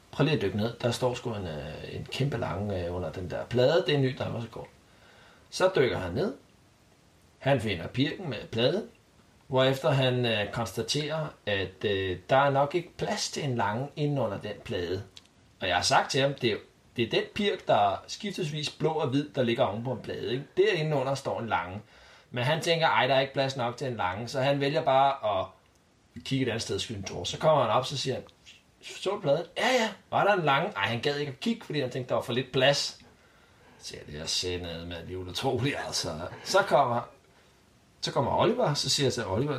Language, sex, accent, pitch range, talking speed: Danish, male, native, 110-140 Hz, 220 wpm